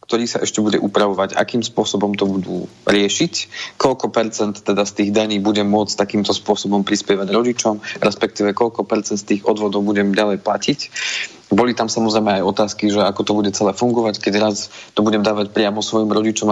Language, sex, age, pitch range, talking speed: Slovak, male, 30-49, 105-115 Hz, 180 wpm